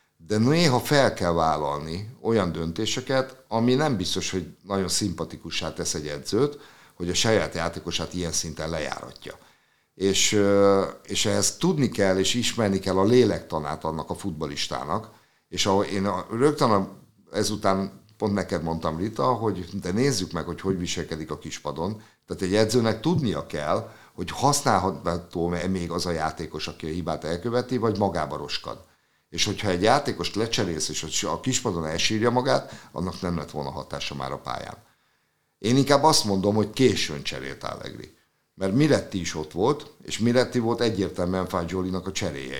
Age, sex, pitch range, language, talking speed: 50-69, male, 85-110 Hz, Hungarian, 160 wpm